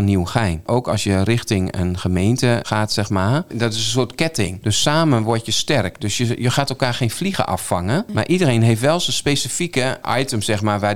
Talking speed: 210 wpm